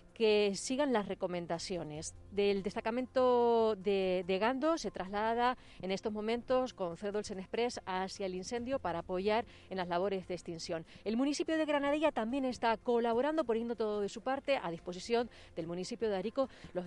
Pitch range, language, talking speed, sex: 185-240 Hz, Spanish, 165 wpm, female